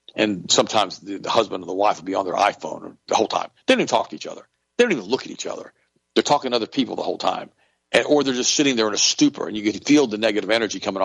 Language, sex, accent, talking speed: English, male, American, 295 wpm